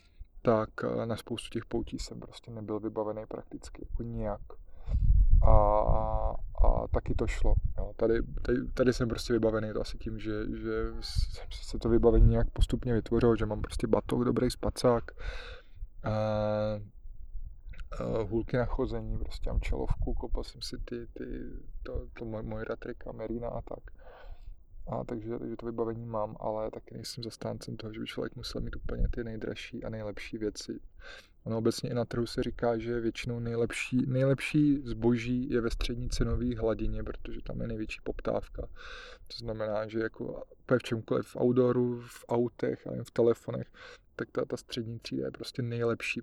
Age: 20-39